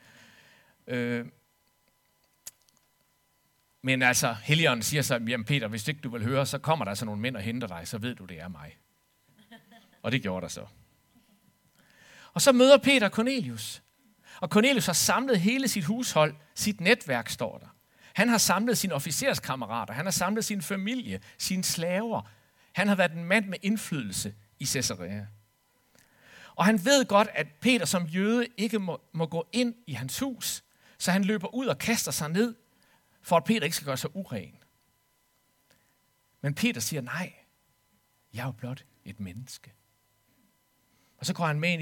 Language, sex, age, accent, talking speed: Danish, male, 60-79, native, 170 wpm